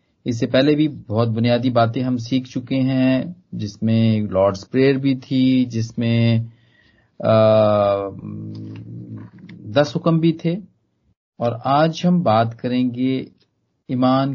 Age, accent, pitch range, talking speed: 40-59, native, 110-155 Hz, 110 wpm